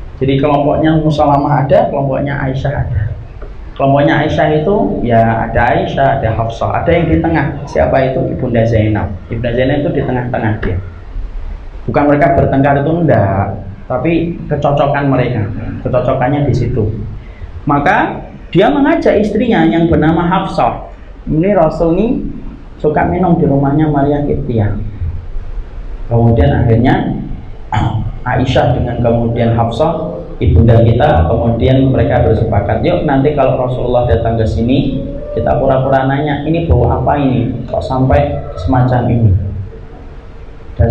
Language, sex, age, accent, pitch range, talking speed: Indonesian, male, 30-49, native, 110-145 Hz, 130 wpm